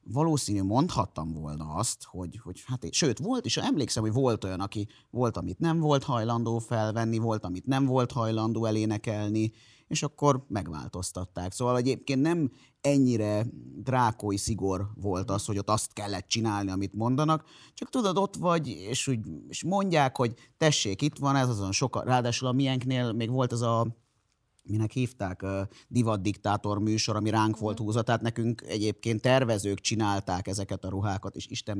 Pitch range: 105-130 Hz